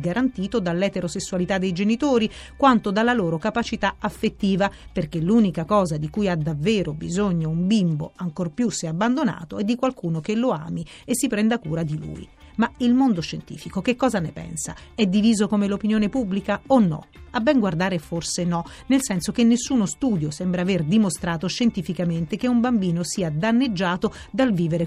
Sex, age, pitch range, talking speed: female, 40-59, 175-230 Hz, 170 wpm